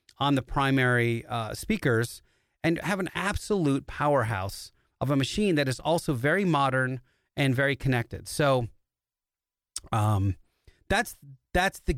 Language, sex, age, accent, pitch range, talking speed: English, male, 30-49, American, 120-150 Hz, 130 wpm